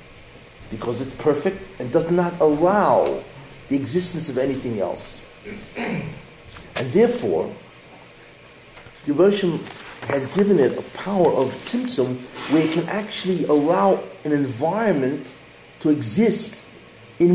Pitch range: 135-195 Hz